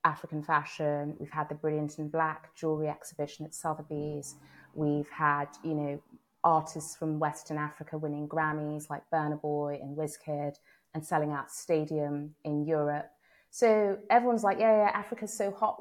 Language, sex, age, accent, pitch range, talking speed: English, female, 30-49, British, 150-175 Hz, 155 wpm